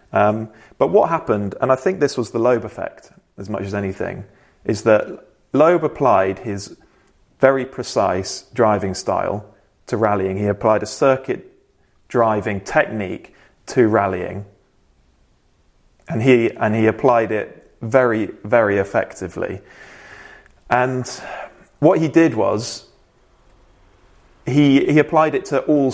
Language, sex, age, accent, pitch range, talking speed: English, male, 30-49, British, 100-130 Hz, 125 wpm